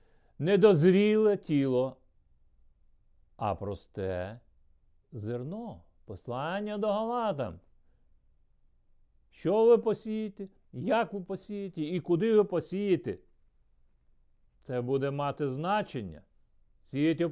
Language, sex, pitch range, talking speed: Ukrainian, male, 125-200 Hz, 85 wpm